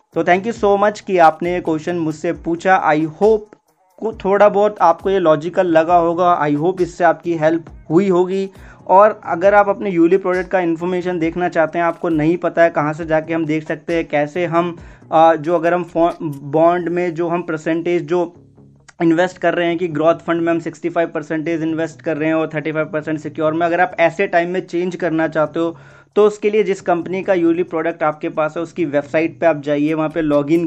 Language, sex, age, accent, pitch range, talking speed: Hindi, male, 20-39, native, 155-175 Hz, 215 wpm